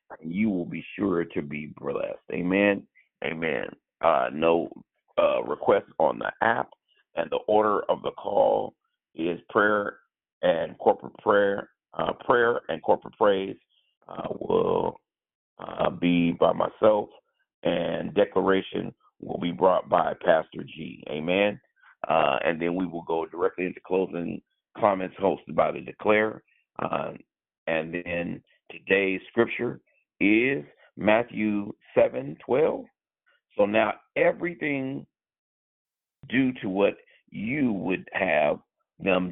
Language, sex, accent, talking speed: English, male, American, 120 wpm